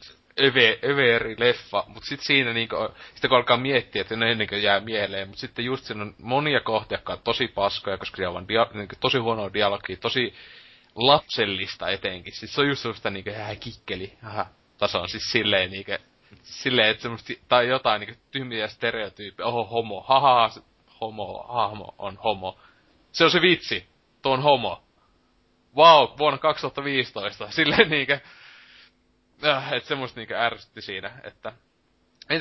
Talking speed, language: 155 wpm, Finnish